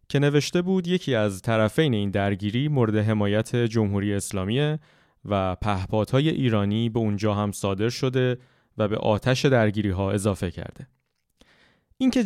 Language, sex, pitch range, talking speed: Persian, male, 105-140 Hz, 135 wpm